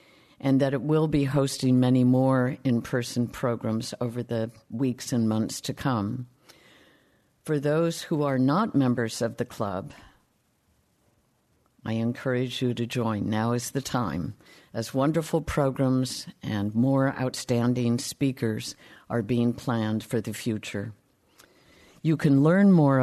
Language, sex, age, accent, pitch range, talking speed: English, female, 50-69, American, 120-145 Hz, 135 wpm